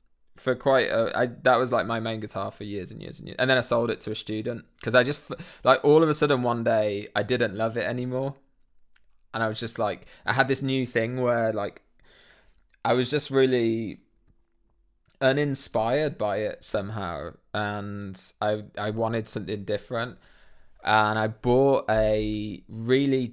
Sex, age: male, 20-39